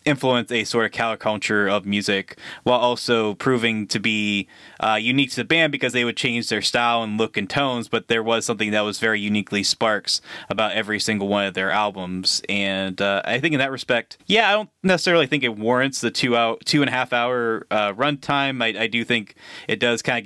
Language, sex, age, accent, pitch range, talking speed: English, male, 20-39, American, 100-125 Hz, 225 wpm